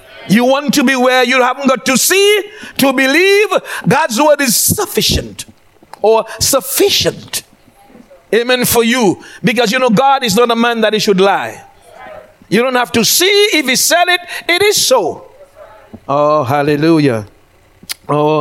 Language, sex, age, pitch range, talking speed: English, male, 60-79, 150-235 Hz, 155 wpm